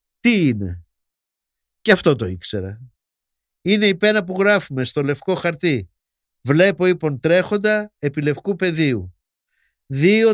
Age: 50-69